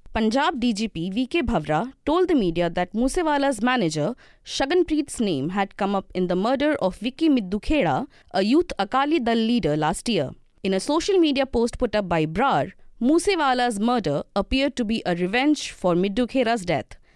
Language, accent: English, Indian